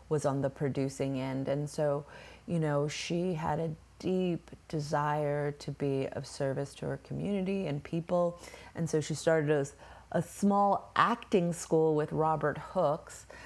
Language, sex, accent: English, female, American